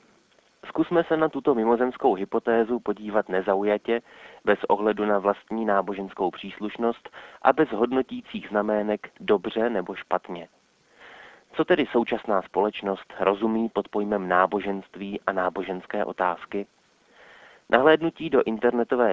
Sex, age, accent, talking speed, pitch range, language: male, 30-49, native, 110 wpm, 100-120 Hz, Czech